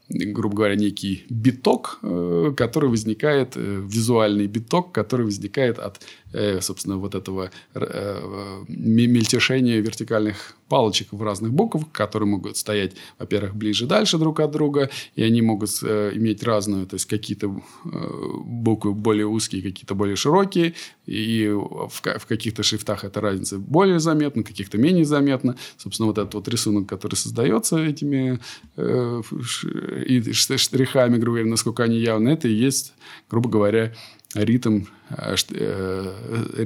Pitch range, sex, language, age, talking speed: 100-125 Hz, male, Russian, 20-39, 125 wpm